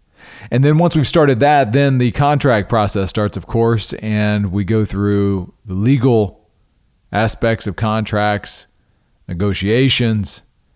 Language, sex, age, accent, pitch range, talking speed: English, male, 40-59, American, 100-125 Hz, 130 wpm